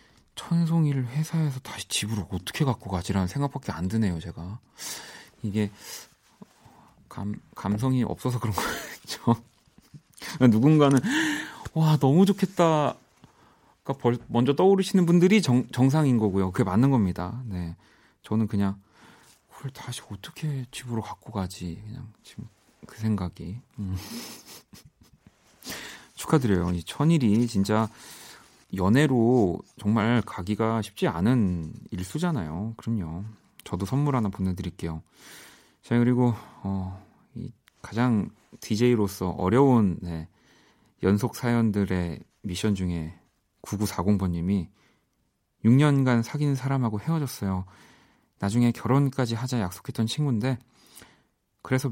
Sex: male